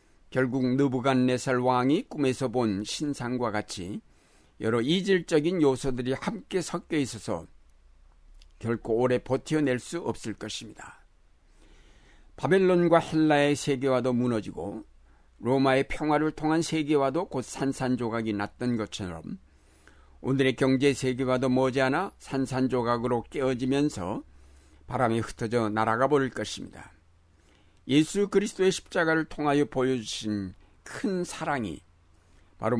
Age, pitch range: 60-79, 105-140 Hz